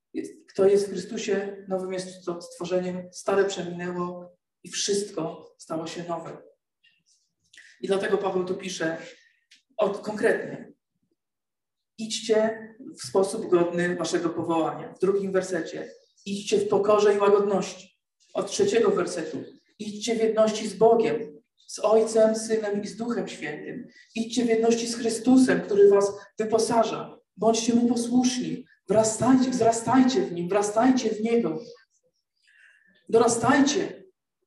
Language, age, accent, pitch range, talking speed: Polish, 40-59, native, 200-240 Hz, 120 wpm